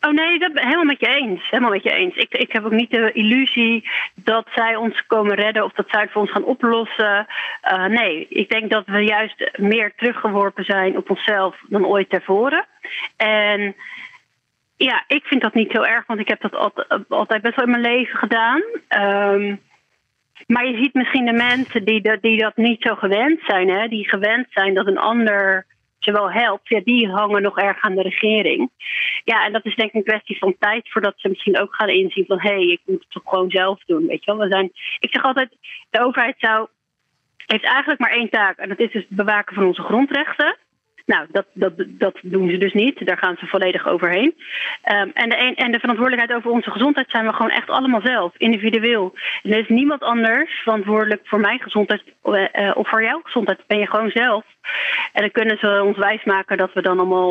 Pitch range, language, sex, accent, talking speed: 200-240 Hz, Dutch, female, Dutch, 215 wpm